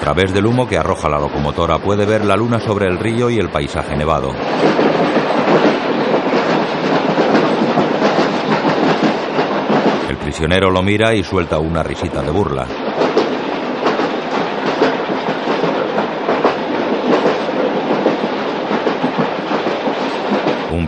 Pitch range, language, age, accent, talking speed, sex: 80-100 Hz, Spanish, 60-79, Spanish, 85 wpm, male